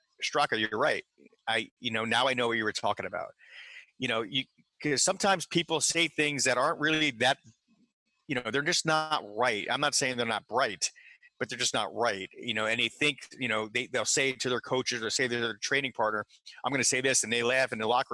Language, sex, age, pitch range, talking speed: English, male, 30-49, 125-160 Hz, 240 wpm